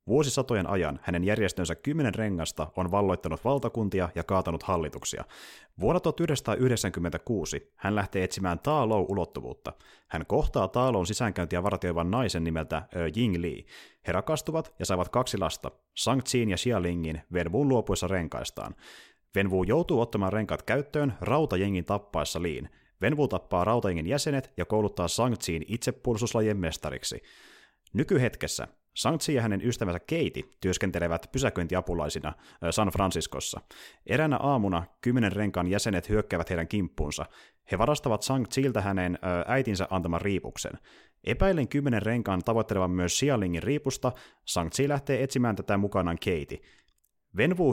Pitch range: 90-125 Hz